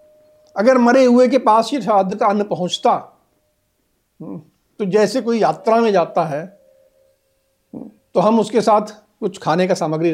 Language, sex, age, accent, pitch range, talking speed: Hindi, male, 50-69, native, 195-295 Hz, 150 wpm